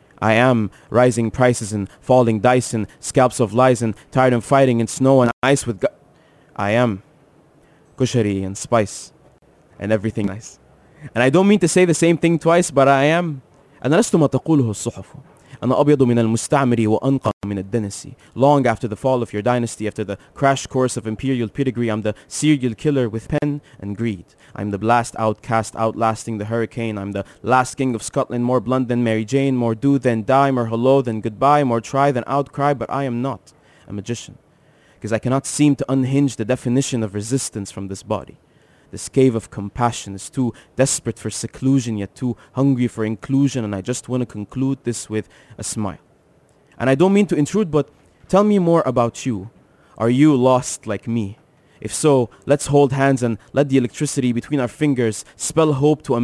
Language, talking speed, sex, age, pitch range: English, 180 wpm, male, 20-39, 110-140 Hz